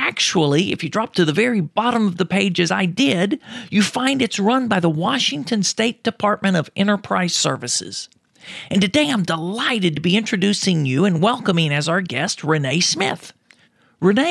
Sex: male